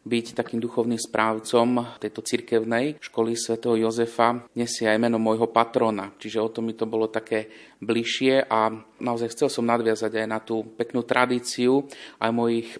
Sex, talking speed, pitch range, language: male, 160 wpm, 110-120 Hz, Slovak